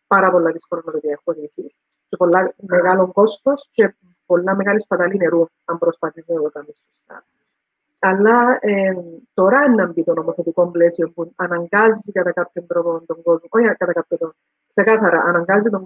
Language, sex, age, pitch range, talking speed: English, female, 30-49, 180-230 Hz, 150 wpm